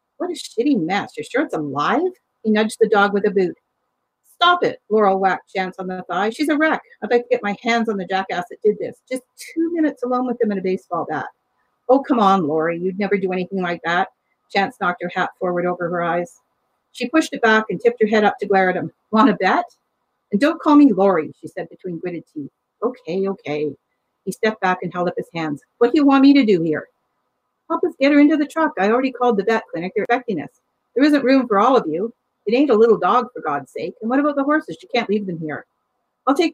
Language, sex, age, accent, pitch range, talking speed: English, female, 50-69, American, 185-260 Hz, 255 wpm